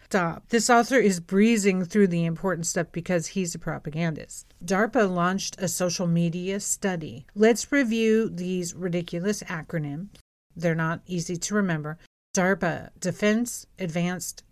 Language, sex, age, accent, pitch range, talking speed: English, female, 50-69, American, 170-210 Hz, 130 wpm